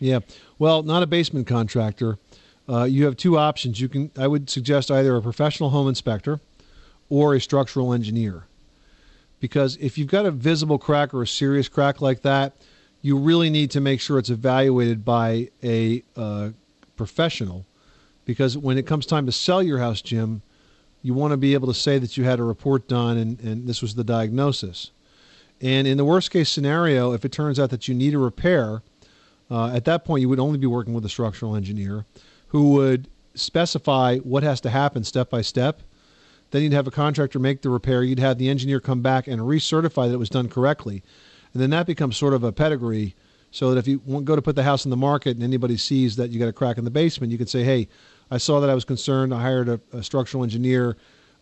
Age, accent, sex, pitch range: 40-59, American, male, 120-140 Hz